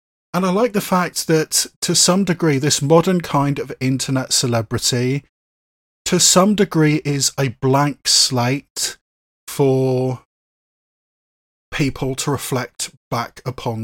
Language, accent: English, British